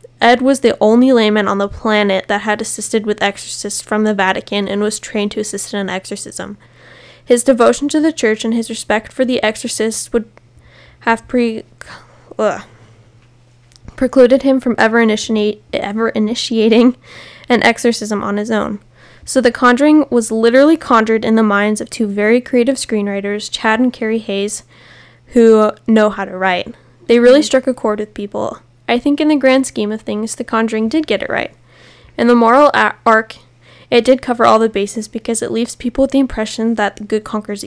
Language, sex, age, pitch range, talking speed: English, female, 10-29, 210-245 Hz, 180 wpm